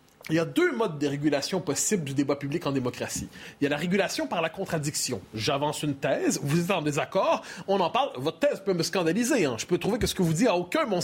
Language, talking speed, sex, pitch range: French, 260 wpm, male, 155-225 Hz